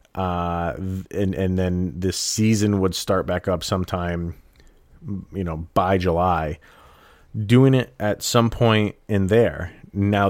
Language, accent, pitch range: English, American, 85-110 Hz